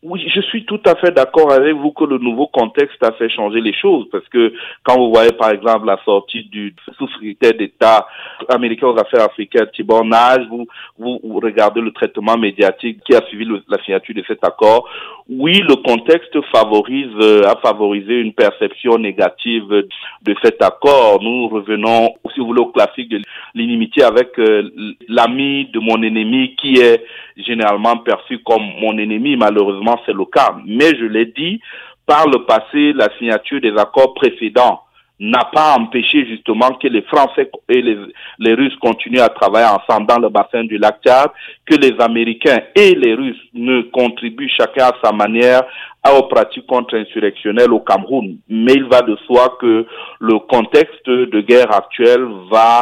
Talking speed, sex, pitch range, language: 175 wpm, male, 110-135 Hz, French